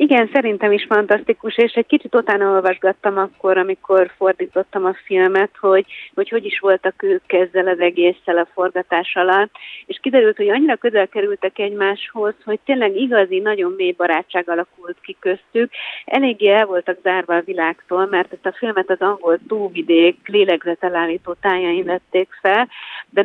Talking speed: 155 wpm